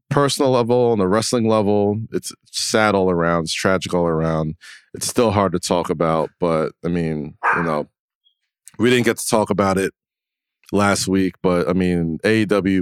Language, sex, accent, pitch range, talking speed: English, male, American, 90-105 Hz, 180 wpm